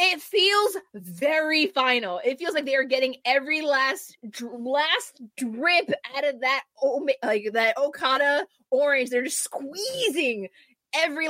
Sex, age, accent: female, 20-39, American